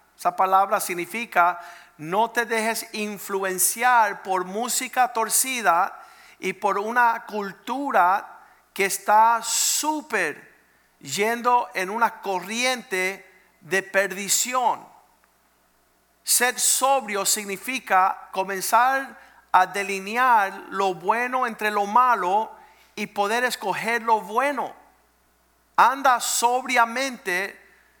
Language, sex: Spanish, male